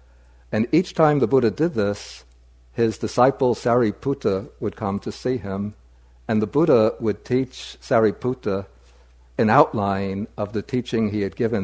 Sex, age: male, 60-79